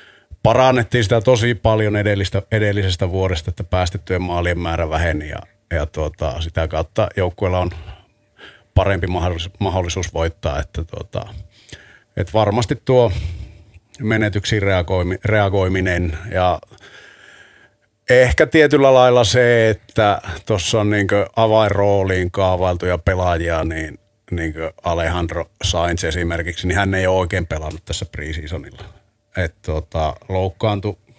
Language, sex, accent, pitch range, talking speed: Finnish, male, native, 85-105 Hz, 110 wpm